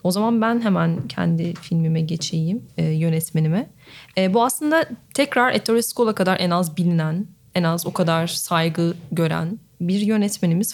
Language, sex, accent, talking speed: Turkish, female, native, 150 wpm